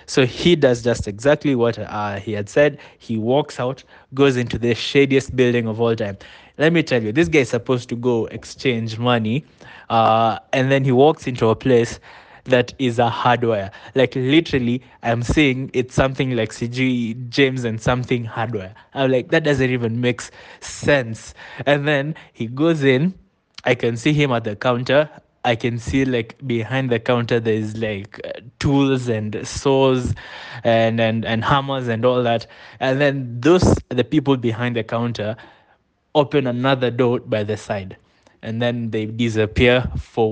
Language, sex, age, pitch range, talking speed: English, male, 20-39, 115-135 Hz, 170 wpm